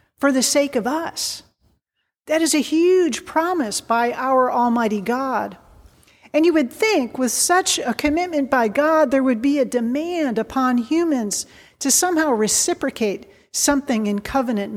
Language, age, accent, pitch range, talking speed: English, 40-59, American, 230-295 Hz, 150 wpm